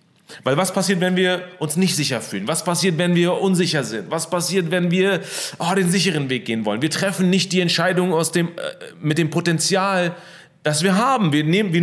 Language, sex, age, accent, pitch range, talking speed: German, male, 30-49, German, 135-175 Hz, 215 wpm